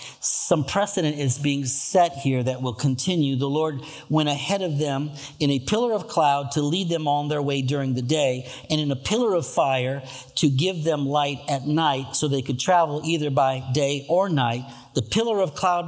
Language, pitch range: English, 135-195 Hz